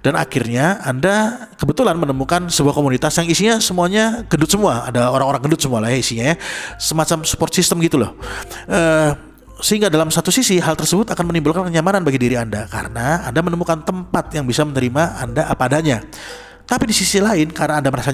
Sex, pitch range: male, 130-175 Hz